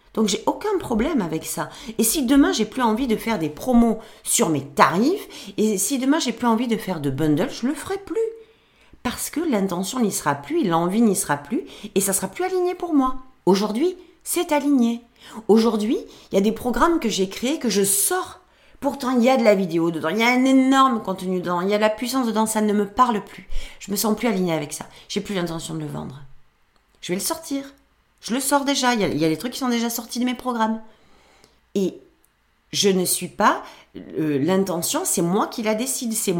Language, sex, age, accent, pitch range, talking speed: French, female, 40-59, French, 185-260 Hz, 235 wpm